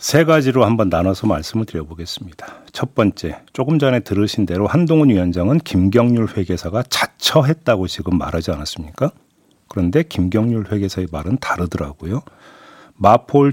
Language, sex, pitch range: Korean, male, 95-150 Hz